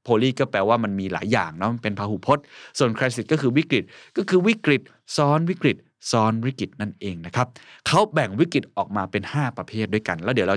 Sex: male